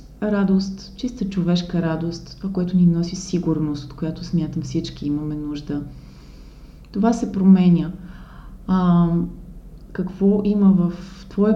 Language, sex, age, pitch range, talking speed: Bulgarian, female, 30-49, 160-190 Hz, 120 wpm